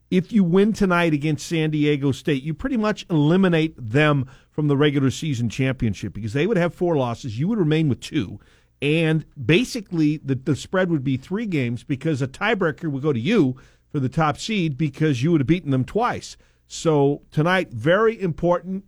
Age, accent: 50-69, American